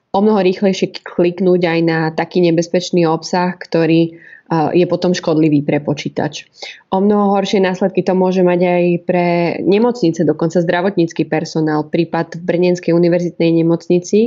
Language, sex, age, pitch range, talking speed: Slovak, female, 20-39, 165-180 Hz, 140 wpm